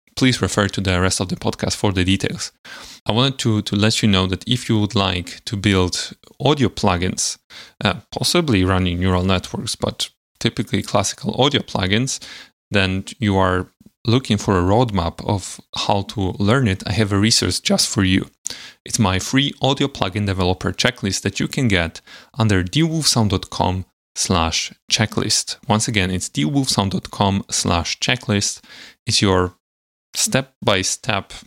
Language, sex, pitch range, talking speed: English, male, 95-120 Hz, 155 wpm